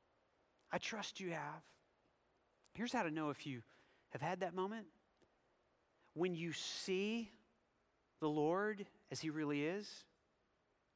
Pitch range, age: 135-180 Hz, 40-59